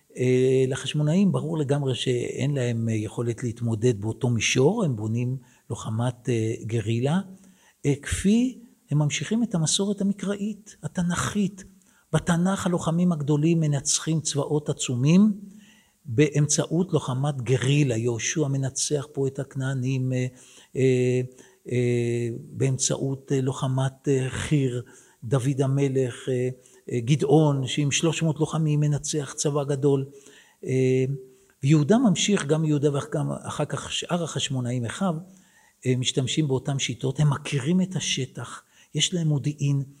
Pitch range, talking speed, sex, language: 130-160 Hz, 100 wpm, male, Hebrew